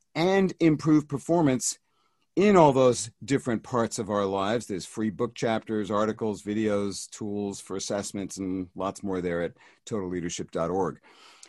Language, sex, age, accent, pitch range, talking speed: English, male, 50-69, American, 110-130 Hz, 135 wpm